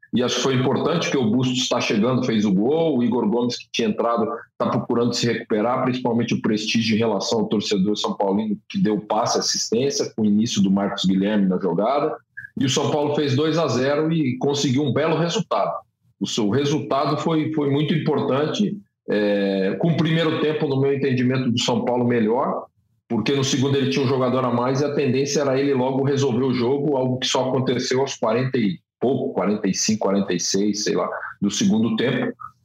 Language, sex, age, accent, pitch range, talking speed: Portuguese, male, 40-59, Brazilian, 110-150 Hz, 200 wpm